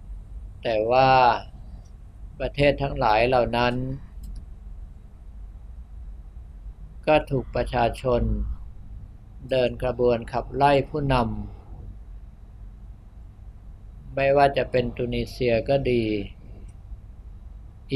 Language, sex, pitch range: Thai, male, 100-130 Hz